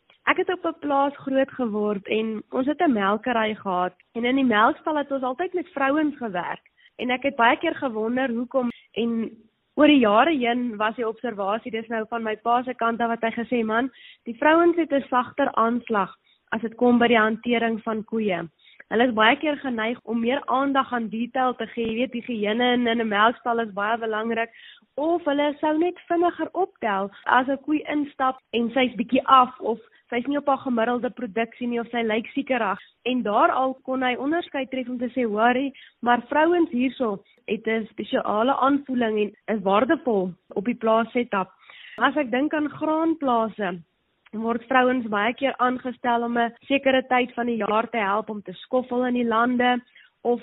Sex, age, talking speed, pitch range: female, 20-39, 200 wpm, 225-265 Hz